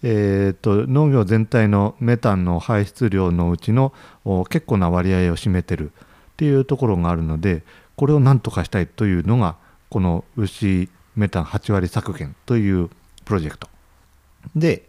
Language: Japanese